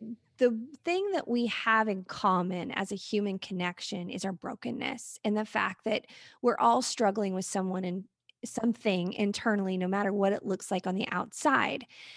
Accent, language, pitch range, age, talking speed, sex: American, English, 195-235 Hz, 20-39, 175 wpm, female